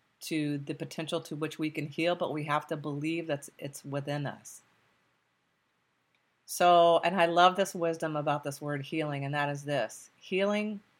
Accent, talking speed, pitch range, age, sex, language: American, 175 wpm, 150-185 Hz, 40-59, female, English